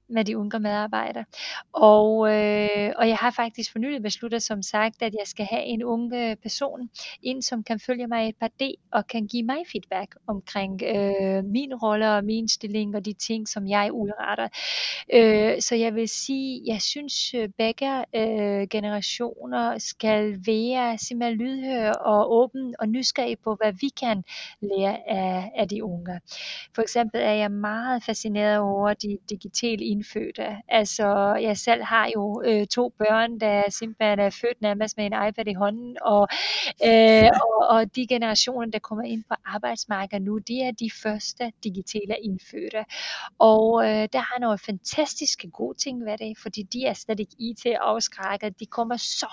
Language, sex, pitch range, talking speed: Danish, female, 210-235 Hz, 170 wpm